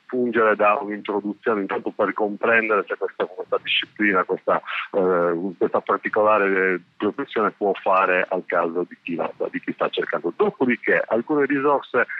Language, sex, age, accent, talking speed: Italian, male, 40-59, native, 140 wpm